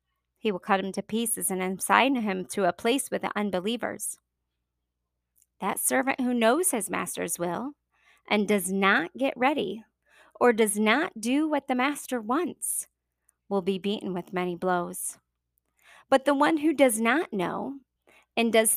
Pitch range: 185-255 Hz